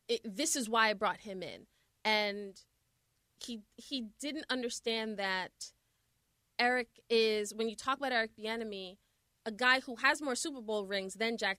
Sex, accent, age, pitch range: female, American, 20-39, 210-265 Hz